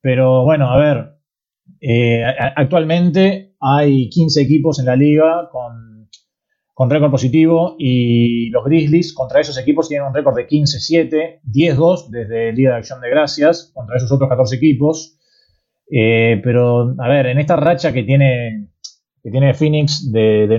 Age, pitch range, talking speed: 30-49, 130-155 Hz, 155 wpm